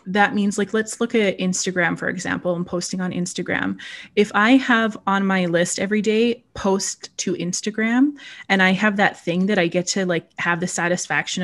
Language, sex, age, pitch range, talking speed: English, female, 20-39, 180-215 Hz, 195 wpm